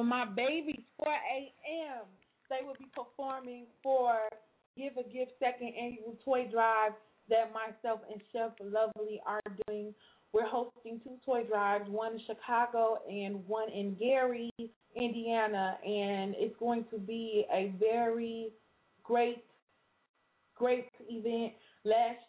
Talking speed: 125 wpm